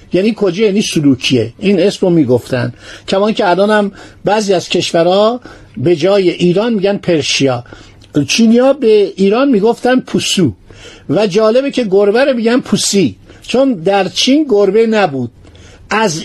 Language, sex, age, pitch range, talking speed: Persian, male, 50-69, 155-225 Hz, 135 wpm